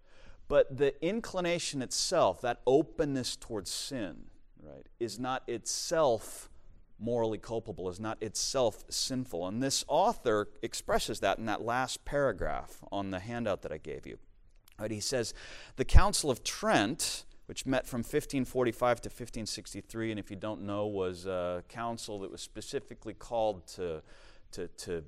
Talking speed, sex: 150 wpm, male